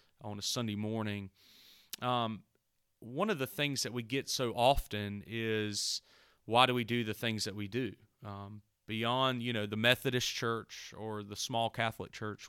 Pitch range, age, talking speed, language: 110-130 Hz, 30-49, 175 wpm, English